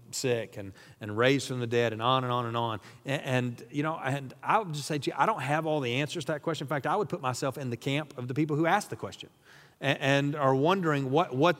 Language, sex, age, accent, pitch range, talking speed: English, male, 40-59, American, 130-160 Hz, 285 wpm